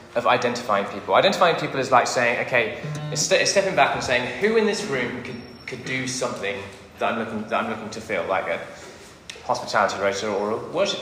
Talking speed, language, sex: 200 wpm, English, male